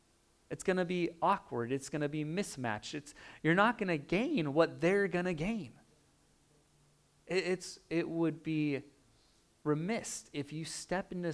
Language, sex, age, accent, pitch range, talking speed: English, male, 30-49, American, 130-165 Hz, 165 wpm